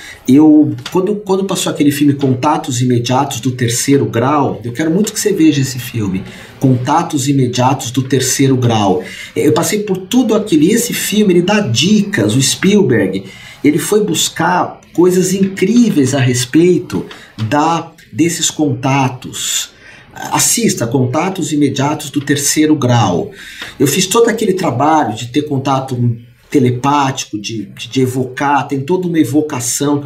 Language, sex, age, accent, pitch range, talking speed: Portuguese, male, 50-69, Brazilian, 125-175 Hz, 140 wpm